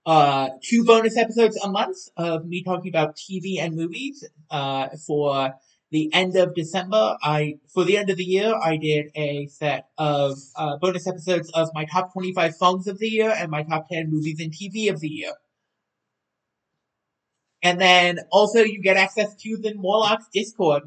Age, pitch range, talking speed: 30-49, 150-190 Hz, 180 wpm